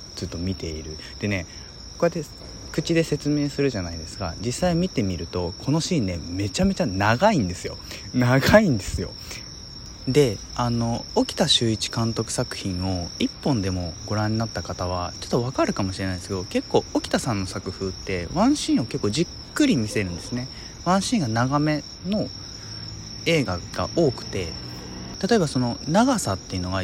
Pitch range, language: 95-150 Hz, Japanese